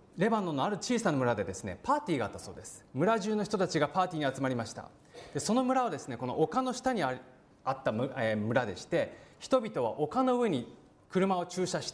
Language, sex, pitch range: Japanese, male, 130-215 Hz